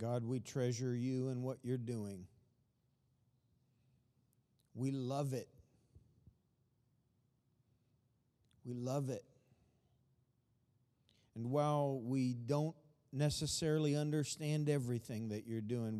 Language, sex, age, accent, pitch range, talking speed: English, male, 50-69, American, 115-130 Hz, 90 wpm